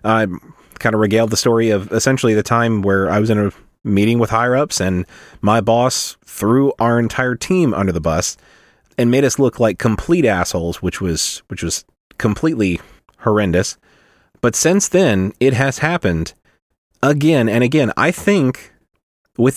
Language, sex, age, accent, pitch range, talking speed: English, male, 30-49, American, 105-130 Hz, 165 wpm